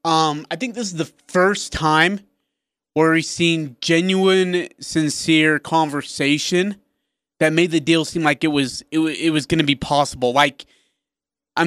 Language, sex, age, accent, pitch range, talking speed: English, male, 20-39, American, 140-170 Hz, 165 wpm